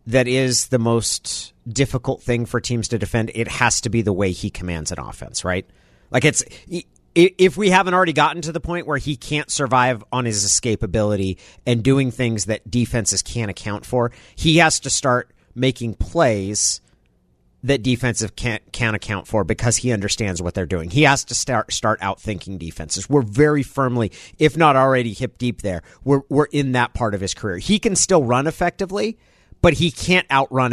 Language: English